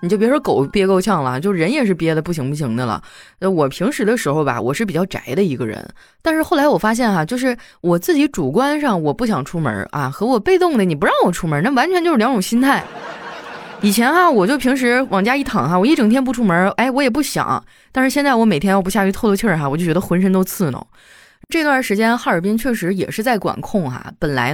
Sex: female